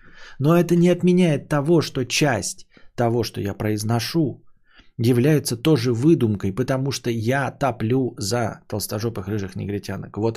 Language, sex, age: Bulgarian, male, 20-39